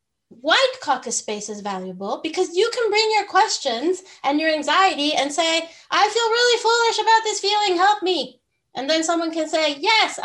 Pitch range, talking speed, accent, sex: 225-335 Hz, 180 wpm, American, female